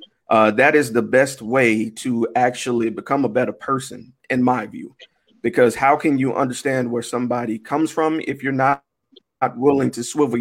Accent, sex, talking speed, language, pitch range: American, male, 180 wpm, English, 120-155 Hz